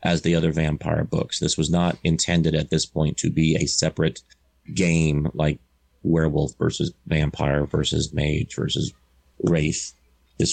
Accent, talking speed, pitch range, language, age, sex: American, 150 wpm, 75-90 Hz, English, 30-49, male